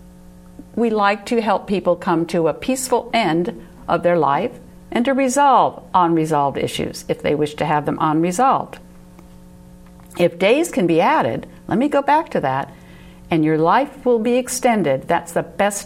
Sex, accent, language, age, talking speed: female, American, English, 60-79, 170 wpm